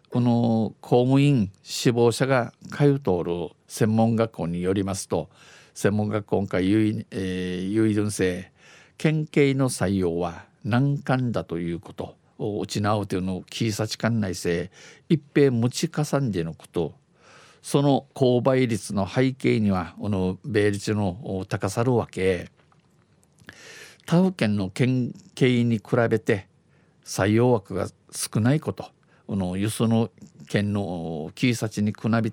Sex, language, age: male, Japanese, 50-69